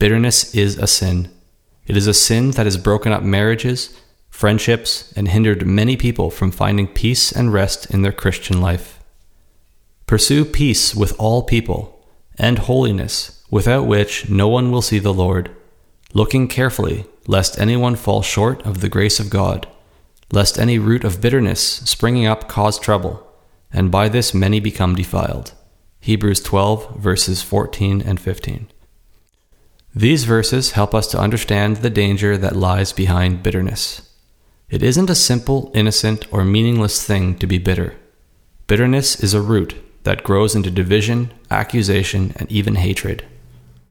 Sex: male